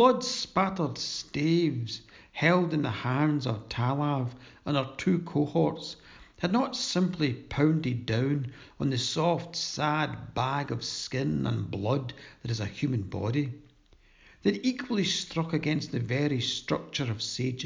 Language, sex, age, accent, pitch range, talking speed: English, male, 60-79, British, 125-165 Hz, 140 wpm